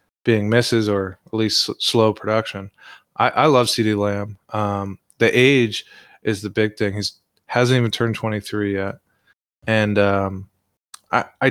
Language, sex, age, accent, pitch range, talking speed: English, male, 20-39, American, 105-120 Hz, 145 wpm